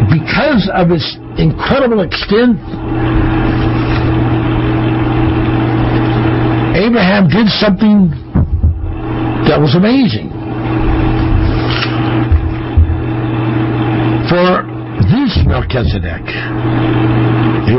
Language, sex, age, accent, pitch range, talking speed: English, male, 60-79, American, 110-170 Hz, 50 wpm